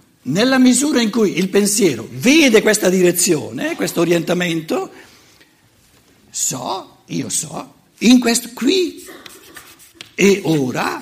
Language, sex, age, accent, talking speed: Italian, male, 60-79, native, 105 wpm